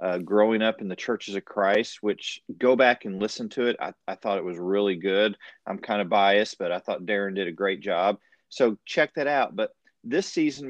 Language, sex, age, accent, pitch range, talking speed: English, male, 40-59, American, 110-155 Hz, 230 wpm